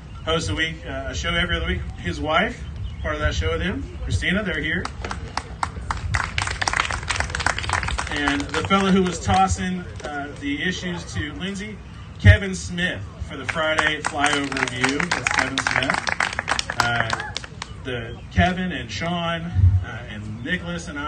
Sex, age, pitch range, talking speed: male, 30-49, 95-135 Hz, 140 wpm